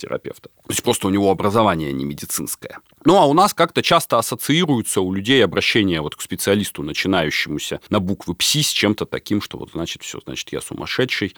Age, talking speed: 40-59, 185 wpm